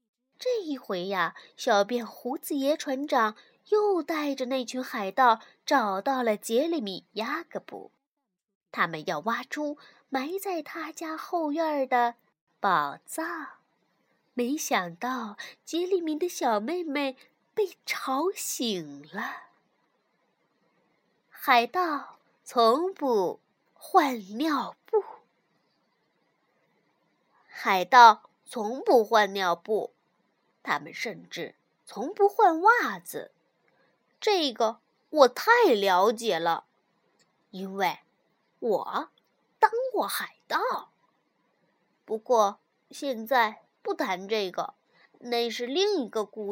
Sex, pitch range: female, 220-330 Hz